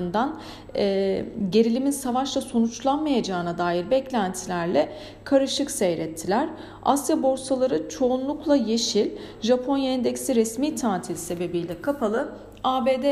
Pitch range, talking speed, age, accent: 190-265 Hz, 80 wpm, 40-59, native